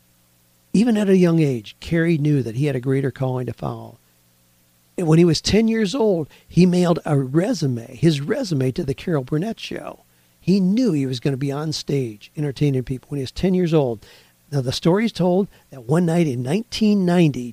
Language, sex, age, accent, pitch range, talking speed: English, male, 50-69, American, 130-170 Hz, 205 wpm